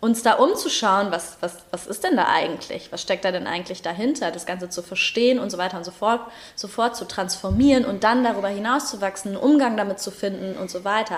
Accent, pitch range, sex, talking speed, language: German, 185-220 Hz, female, 230 wpm, German